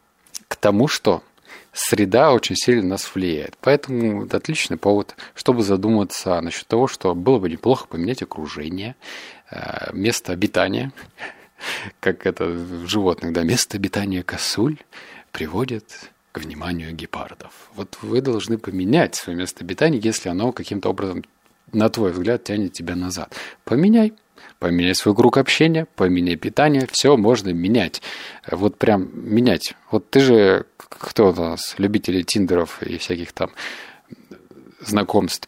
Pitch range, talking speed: 90-125 Hz, 130 wpm